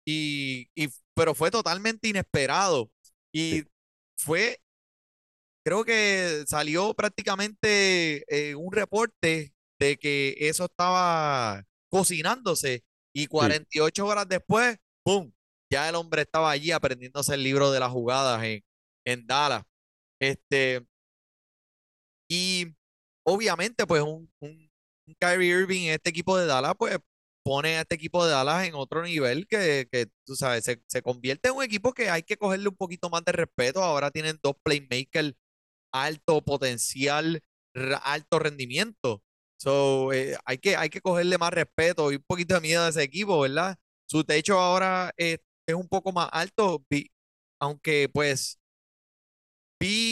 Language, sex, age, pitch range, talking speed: Spanish, male, 20-39, 135-180 Hz, 140 wpm